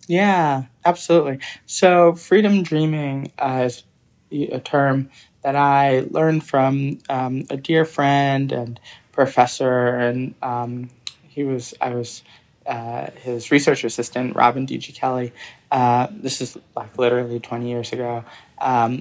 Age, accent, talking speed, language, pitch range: 20-39, American, 125 wpm, English, 125-140 Hz